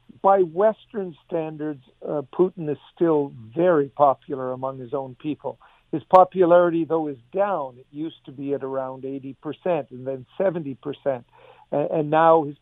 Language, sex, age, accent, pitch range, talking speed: English, male, 50-69, American, 140-170 Hz, 155 wpm